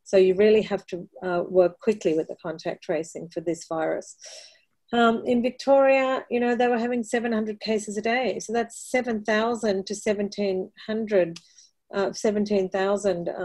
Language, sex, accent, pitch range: English, female, Australian, 185-215 Hz